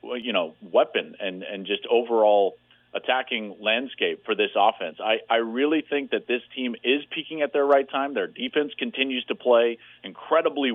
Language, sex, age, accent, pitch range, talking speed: English, male, 40-59, American, 115-160 Hz, 175 wpm